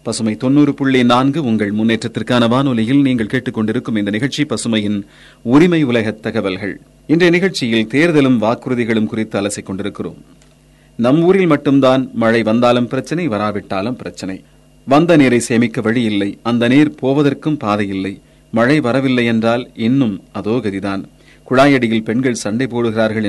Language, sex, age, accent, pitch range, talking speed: Tamil, male, 30-49, native, 110-135 Hz, 105 wpm